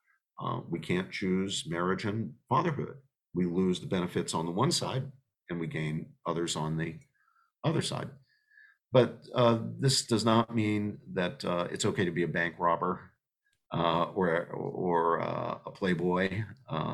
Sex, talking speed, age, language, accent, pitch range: male, 160 wpm, 50-69, English, American, 85-130 Hz